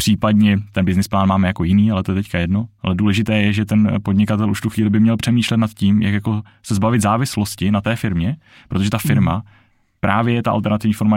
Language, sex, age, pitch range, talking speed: Czech, male, 20-39, 95-110 Hz, 225 wpm